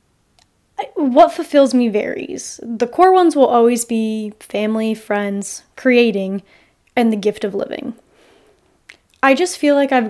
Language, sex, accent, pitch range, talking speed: English, female, American, 205-240 Hz, 135 wpm